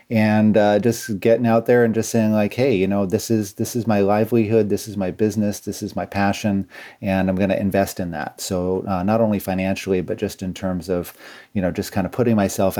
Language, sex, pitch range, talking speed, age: English, male, 95-110 Hz, 240 wpm, 30-49